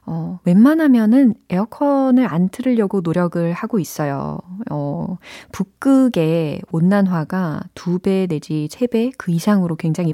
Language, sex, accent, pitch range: Korean, female, native, 160-230 Hz